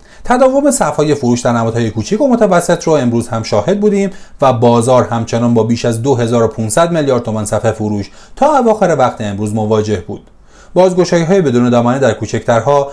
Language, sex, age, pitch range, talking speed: Persian, male, 30-49, 110-155 Hz, 165 wpm